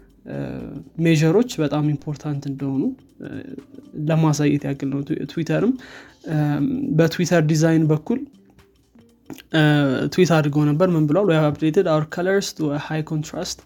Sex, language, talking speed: male, Amharic, 105 wpm